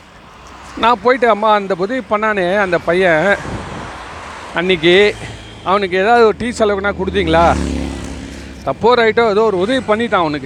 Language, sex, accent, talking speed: Tamil, male, native, 115 wpm